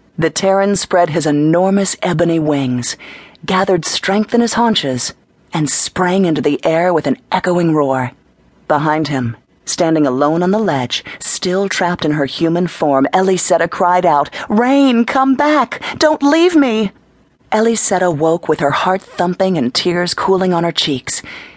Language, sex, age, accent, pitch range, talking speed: English, female, 40-59, American, 140-180 Hz, 155 wpm